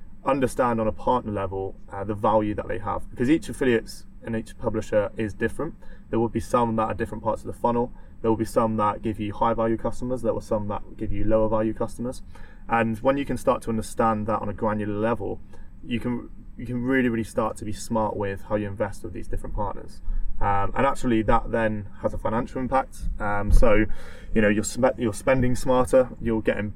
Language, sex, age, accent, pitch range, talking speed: English, male, 20-39, British, 100-115 Hz, 220 wpm